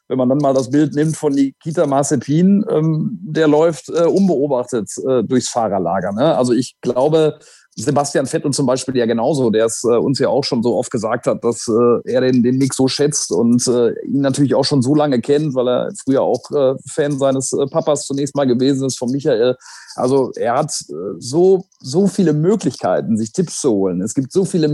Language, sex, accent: German, male, German